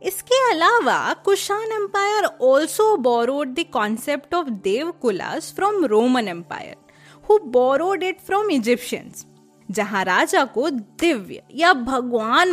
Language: Hindi